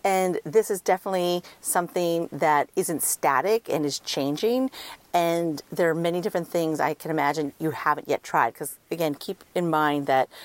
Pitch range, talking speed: 150-185 Hz, 170 wpm